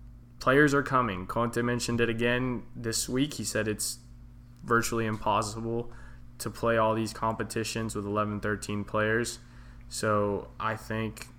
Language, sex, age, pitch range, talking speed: English, male, 20-39, 115-125 Hz, 130 wpm